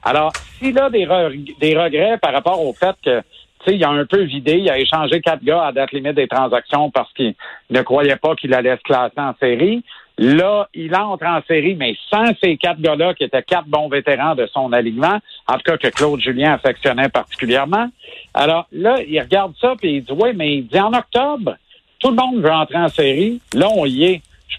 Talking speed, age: 225 wpm, 60-79